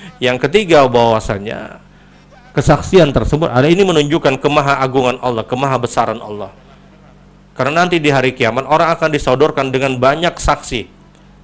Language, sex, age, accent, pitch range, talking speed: Indonesian, male, 40-59, native, 115-150 Hz, 120 wpm